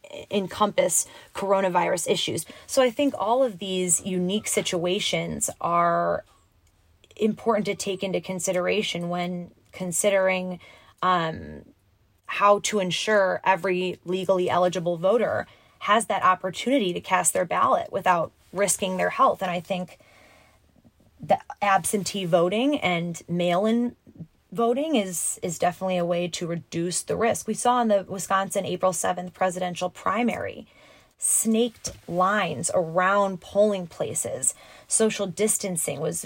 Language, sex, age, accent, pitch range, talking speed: English, female, 20-39, American, 175-205 Hz, 120 wpm